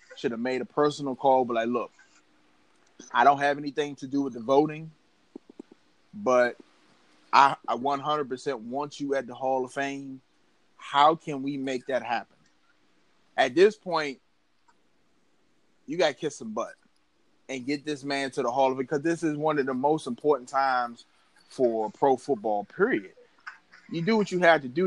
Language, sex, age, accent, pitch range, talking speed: English, male, 30-49, American, 125-160 Hz, 175 wpm